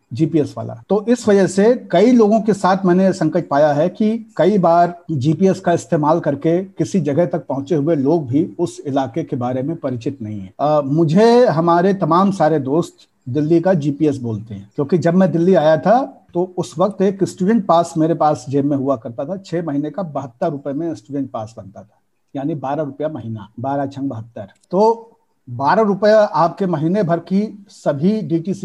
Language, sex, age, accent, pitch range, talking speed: Hindi, male, 50-69, native, 140-190 Hz, 135 wpm